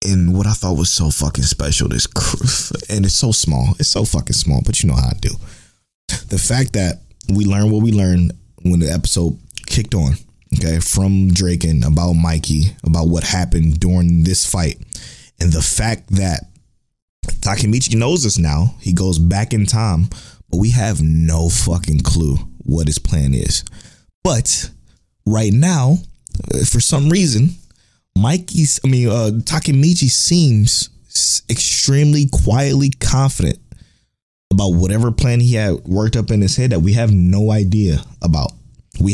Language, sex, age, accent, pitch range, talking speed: English, male, 20-39, American, 85-120 Hz, 155 wpm